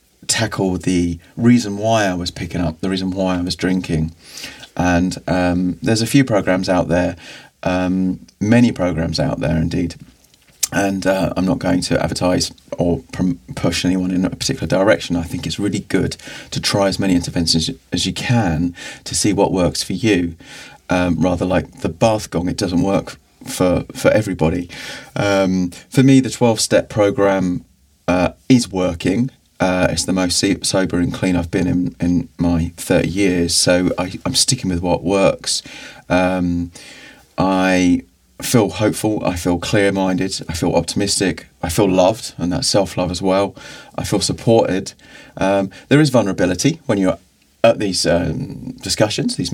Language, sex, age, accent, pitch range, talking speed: English, male, 30-49, British, 90-100 Hz, 160 wpm